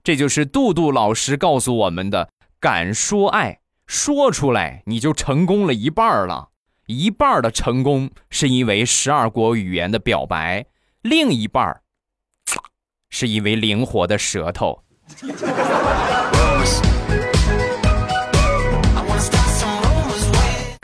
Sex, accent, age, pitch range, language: male, native, 20-39, 105-150 Hz, Chinese